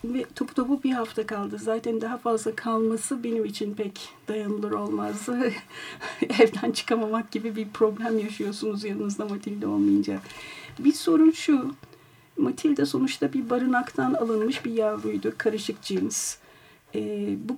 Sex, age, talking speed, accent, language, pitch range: female, 50-69, 130 wpm, native, Turkish, 215-255 Hz